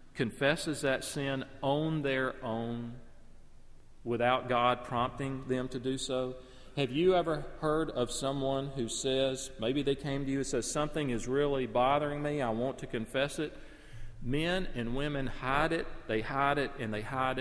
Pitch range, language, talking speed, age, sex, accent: 120-150 Hz, English, 170 wpm, 40-59, male, American